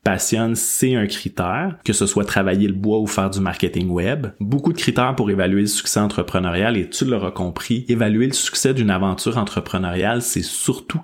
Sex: male